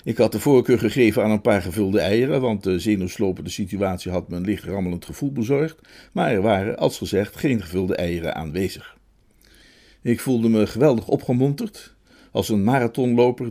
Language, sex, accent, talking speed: Dutch, male, Dutch, 170 wpm